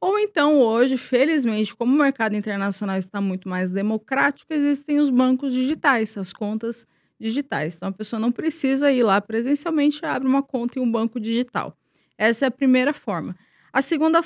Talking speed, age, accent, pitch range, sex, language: 175 wpm, 20-39, Brazilian, 200-270 Hz, female, Portuguese